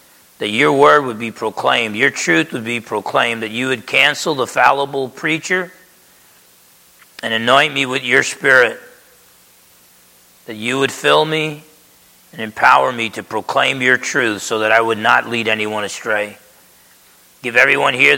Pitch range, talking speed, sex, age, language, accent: 105-140 Hz, 155 wpm, male, 40-59, English, American